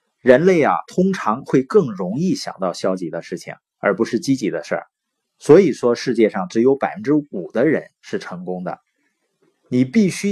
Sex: male